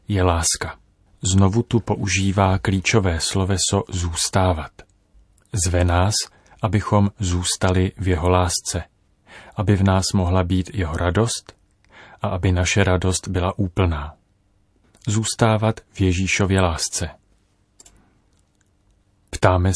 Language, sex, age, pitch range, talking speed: Czech, male, 30-49, 90-100 Hz, 100 wpm